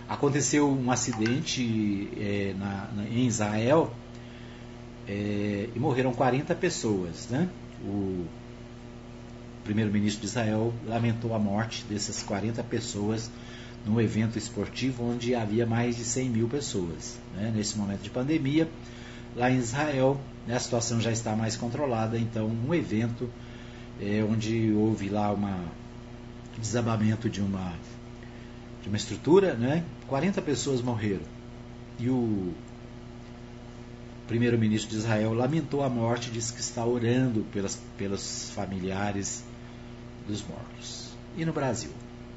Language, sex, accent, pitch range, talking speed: Portuguese, male, Brazilian, 110-120 Hz, 125 wpm